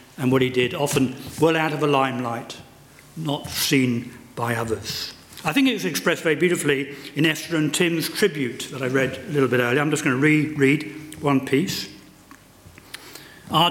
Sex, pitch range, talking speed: male, 130-155 Hz, 180 wpm